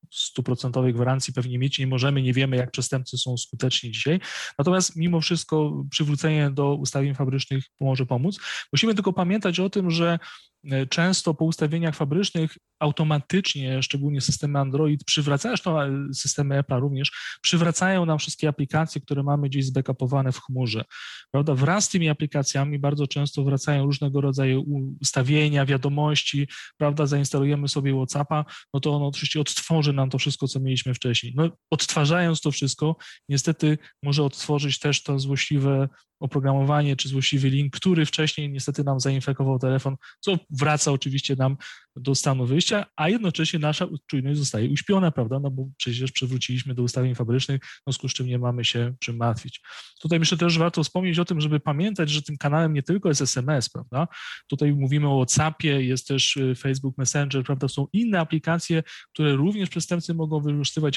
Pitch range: 135-155 Hz